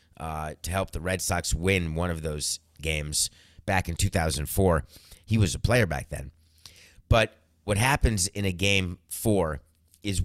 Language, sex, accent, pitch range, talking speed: English, male, American, 80-105 Hz, 165 wpm